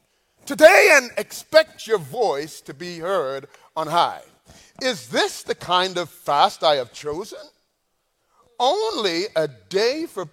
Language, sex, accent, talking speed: English, male, American, 135 wpm